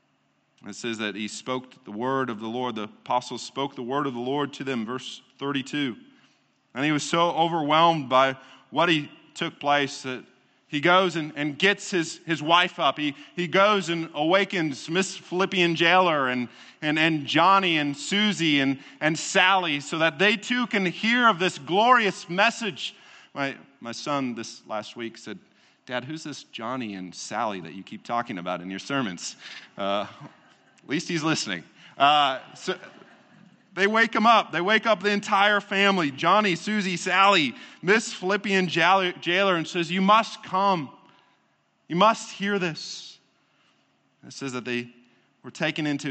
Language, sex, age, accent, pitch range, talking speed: English, male, 40-59, American, 130-190 Hz, 170 wpm